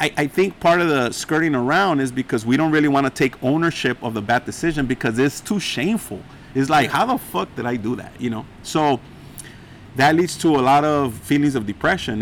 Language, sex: English, male